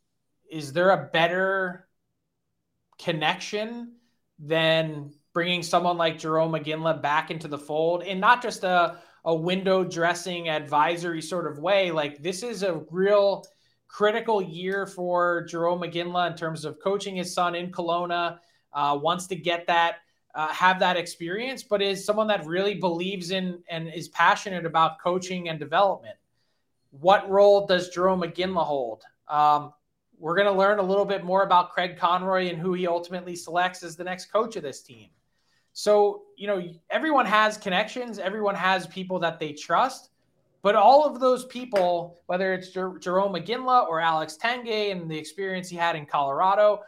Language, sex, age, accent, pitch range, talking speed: English, male, 20-39, American, 165-195 Hz, 165 wpm